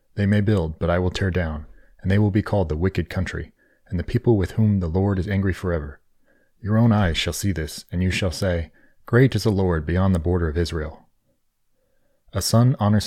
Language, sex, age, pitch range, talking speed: English, male, 30-49, 90-110 Hz, 220 wpm